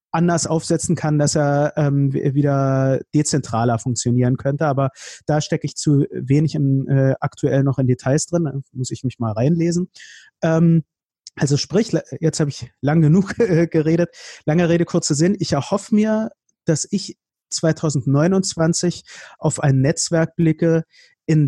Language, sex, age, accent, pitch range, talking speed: German, male, 30-49, German, 140-175 Hz, 150 wpm